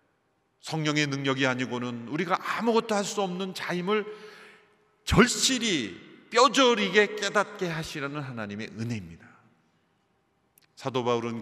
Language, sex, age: Korean, male, 40-59